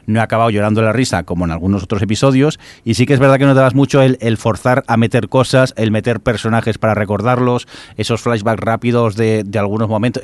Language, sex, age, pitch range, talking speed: Spanish, male, 30-49, 95-120 Hz, 230 wpm